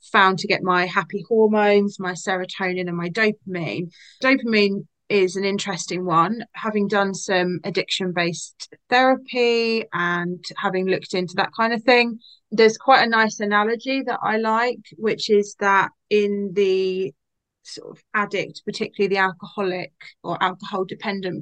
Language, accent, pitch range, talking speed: English, British, 185-215 Hz, 145 wpm